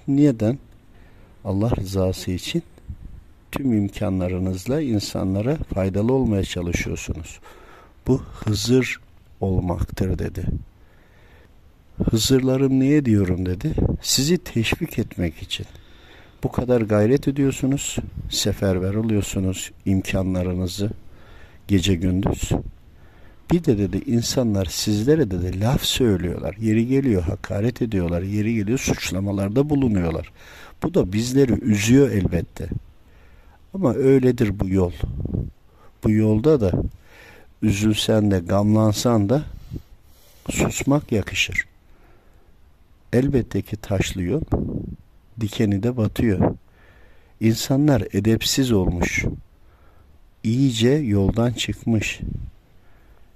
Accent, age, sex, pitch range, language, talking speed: native, 60-79, male, 90-115 Hz, Turkish, 85 wpm